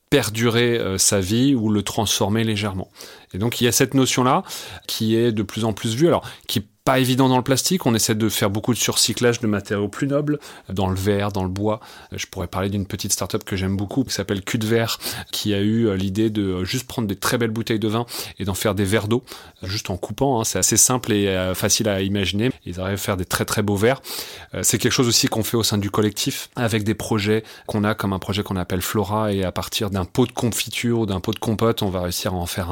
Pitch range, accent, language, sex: 95-120 Hz, French, French, male